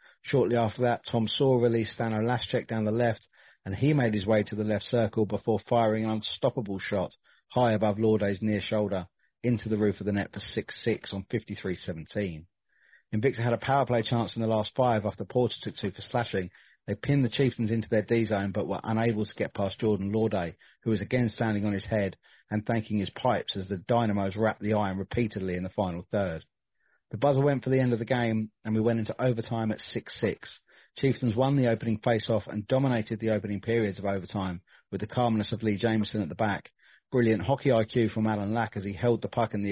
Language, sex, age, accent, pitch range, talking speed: English, male, 40-59, British, 105-120 Hz, 215 wpm